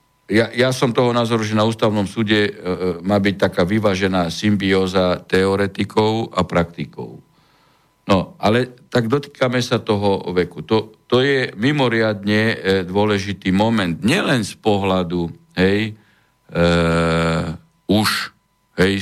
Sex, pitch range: male, 95-120 Hz